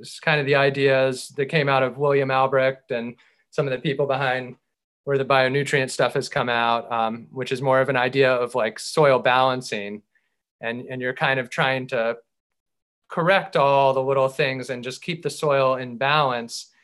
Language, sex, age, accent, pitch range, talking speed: English, male, 30-49, American, 125-145 Hz, 195 wpm